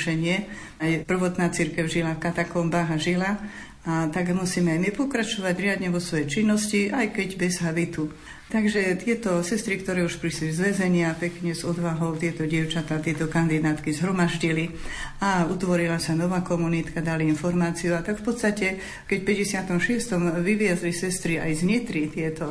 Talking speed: 150 wpm